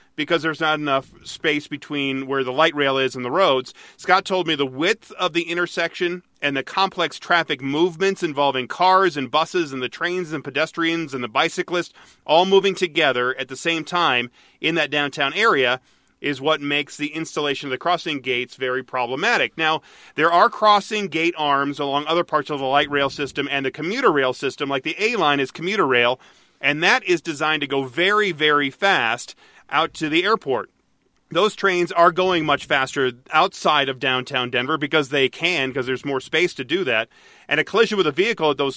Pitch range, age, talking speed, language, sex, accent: 135-170 Hz, 40-59, 195 wpm, English, male, American